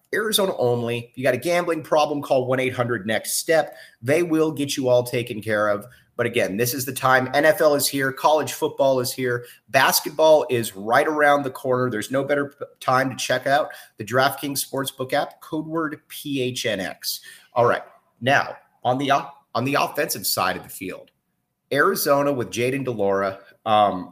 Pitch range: 105-140 Hz